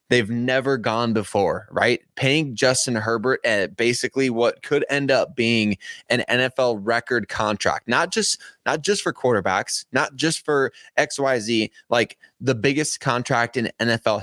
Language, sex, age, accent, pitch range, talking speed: English, male, 20-39, American, 110-135 Hz, 155 wpm